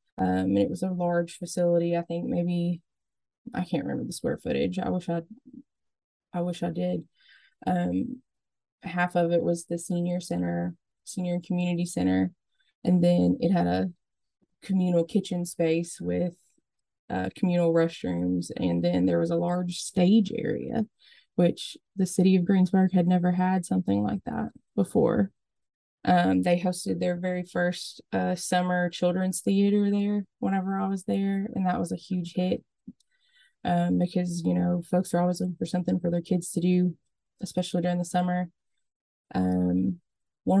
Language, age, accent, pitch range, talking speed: English, 20-39, American, 170-185 Hz, 160 wpm